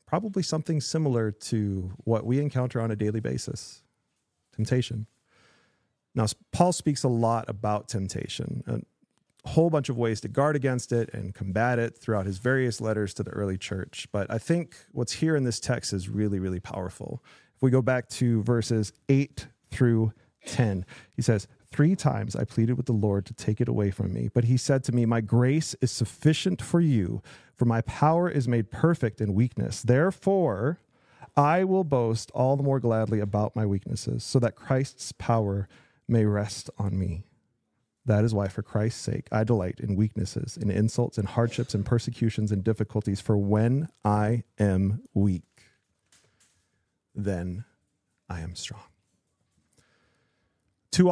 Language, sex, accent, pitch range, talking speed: English, male, American, 100-125 Hz, 165 wpm